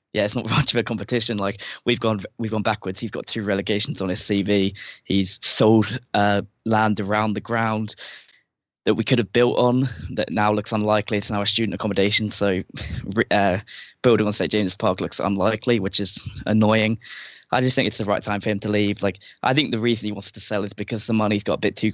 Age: 10-29